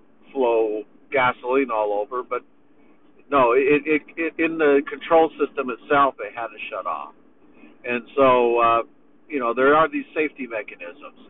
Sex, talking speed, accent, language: male, 160 wpm, American, English